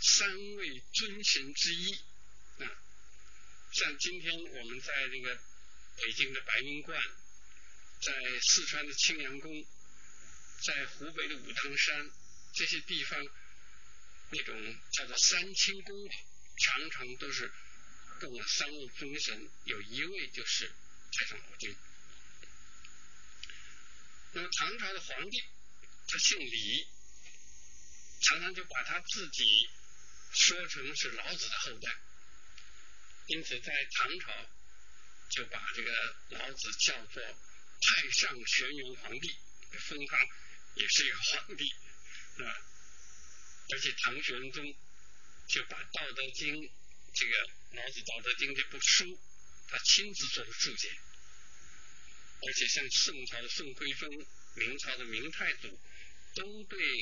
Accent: native